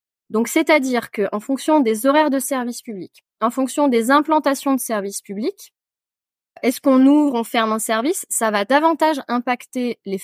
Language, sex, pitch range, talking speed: French, female, 210-270 Hz, 165 wpm